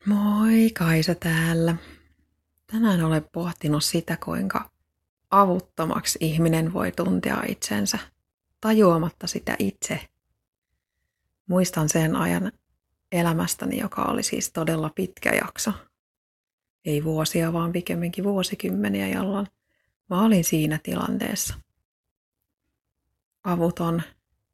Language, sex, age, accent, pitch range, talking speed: Finnish, female, 30-49, native, 155-185 Hz, 90 wpm